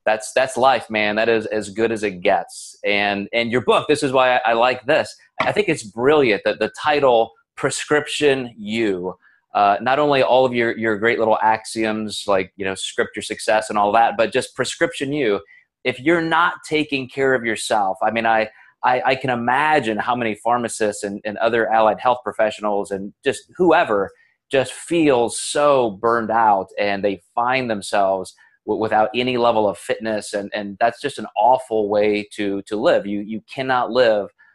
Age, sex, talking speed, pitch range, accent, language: 30-49, male, 185 wpm, 105-130 Hz, American, English